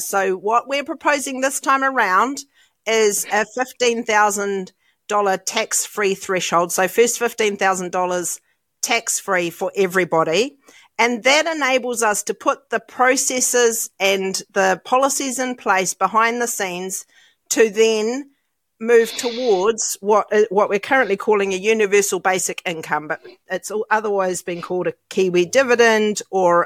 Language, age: English, 40-59